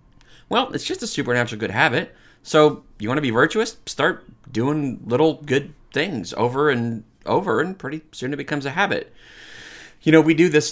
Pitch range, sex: 115-145 Hz, male